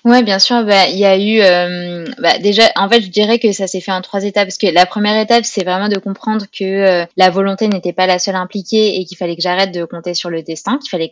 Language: French